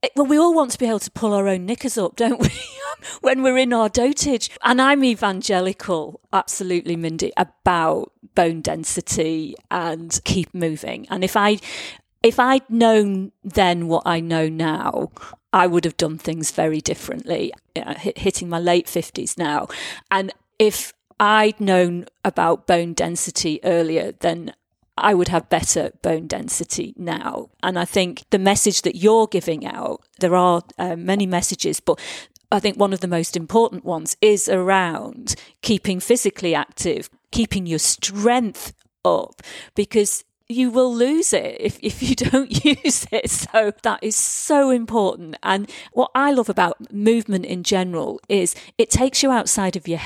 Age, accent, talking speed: 40-59, British, 160 wpm